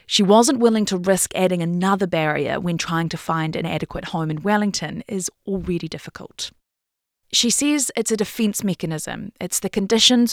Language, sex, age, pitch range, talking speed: English, female, 30-49, 170-220 Hz, 170 wpm